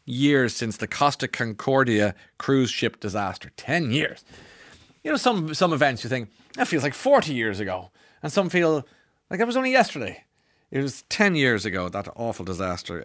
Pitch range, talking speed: 90-125 Hz, 180 wpm